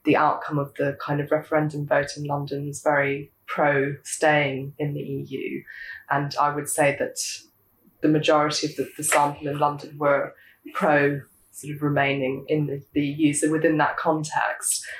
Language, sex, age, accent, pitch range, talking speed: English, female, 20-39, British, 145-155 Hz, 165 wpm